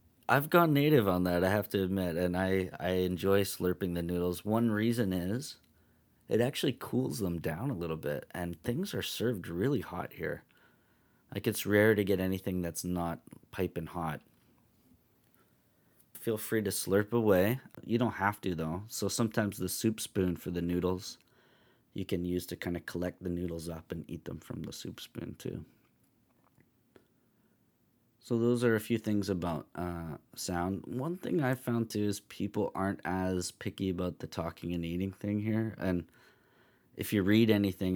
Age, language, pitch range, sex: 30-49, English, 85-110 Hz, male